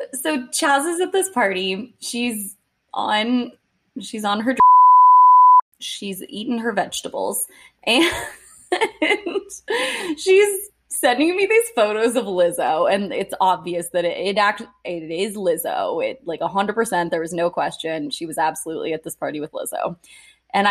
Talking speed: 150 wpm